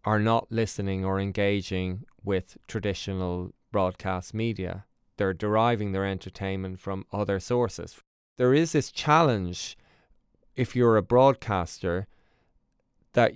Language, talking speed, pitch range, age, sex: English, 110 wpm, 95-120 Hz, 20-39, male